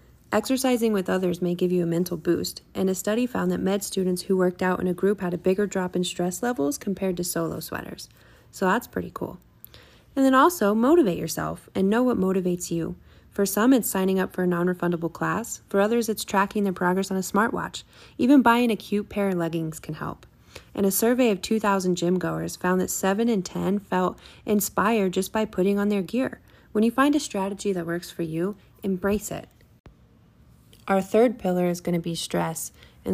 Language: English